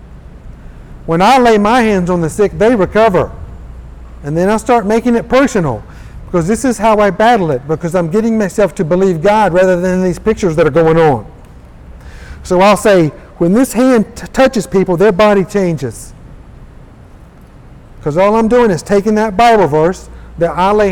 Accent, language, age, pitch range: American, English, 50-69, 155-220 Hz